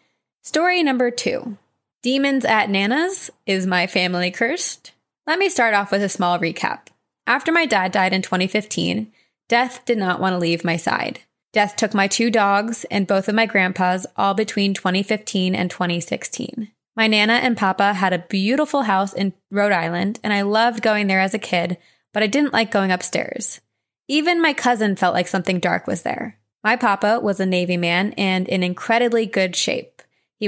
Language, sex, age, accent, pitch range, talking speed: English, female, 20-39, American, 185-230 Hz, 185 wpm